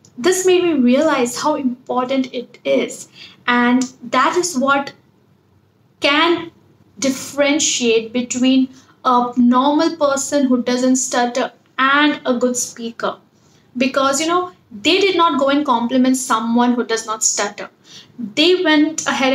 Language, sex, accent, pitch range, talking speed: English, female, Indian, 240-285 Hz, 130 wpm